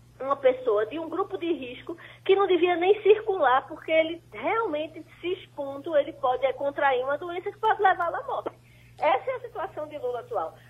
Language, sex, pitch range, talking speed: Portuguese, female, 255-395 Hz, 190 wpm